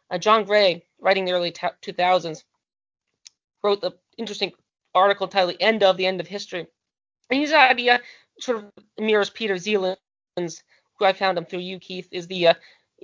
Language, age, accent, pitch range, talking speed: English, 20-39, American, 175-215 Hz, 195 wpm